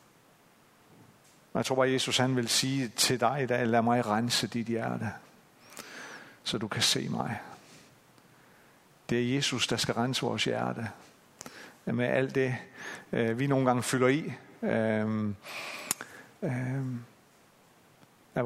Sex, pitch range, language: male, 115-130 Hz, Danish